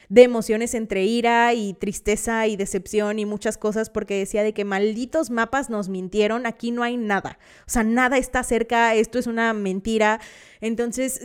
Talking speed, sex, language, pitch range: 175 wpm, female, Spanish, 205-250 Hz